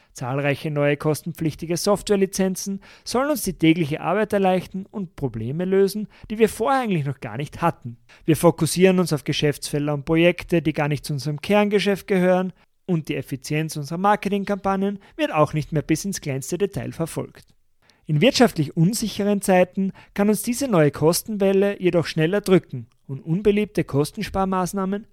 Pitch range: 145-200 Hz